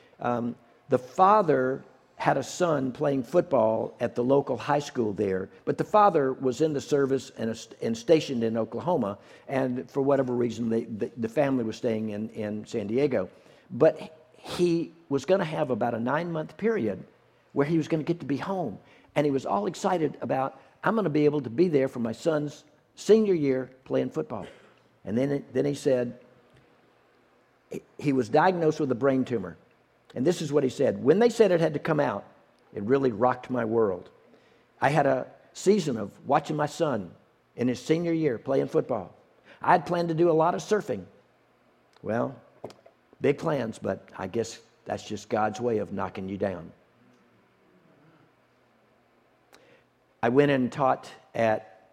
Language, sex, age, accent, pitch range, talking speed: English, male, 60-79, American, 115-155 Hz, 175 wpm